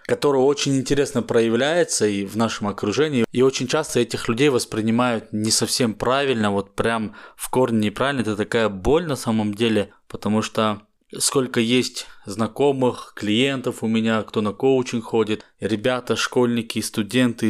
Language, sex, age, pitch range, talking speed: Russian, male, 20-39, 100-120 Hz, 145 wpm